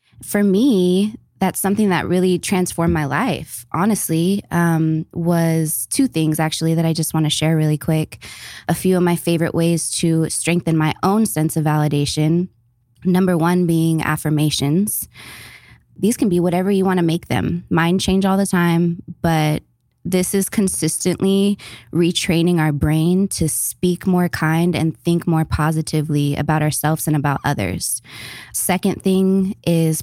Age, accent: 20-39, American